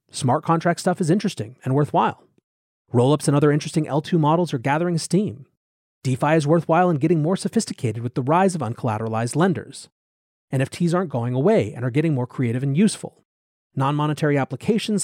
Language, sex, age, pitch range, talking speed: English, male, 30-49, 120-170 Hz, 170 wpm